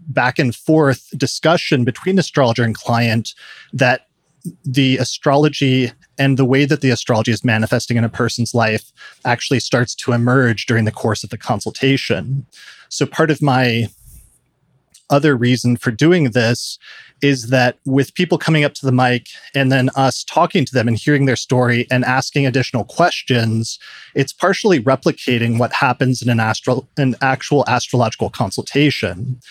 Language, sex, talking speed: English, male, 150 wpm